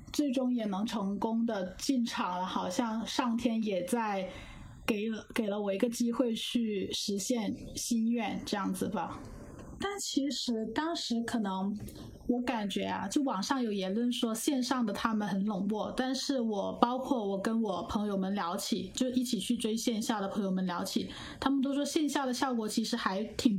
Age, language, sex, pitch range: 20-39, Chinese, female, 205-255 Hz